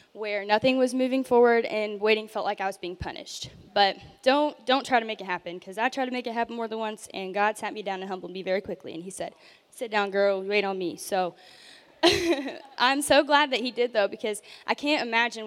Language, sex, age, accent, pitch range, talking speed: English, female, 10-29, American, 205-260 Hz, 240 wpm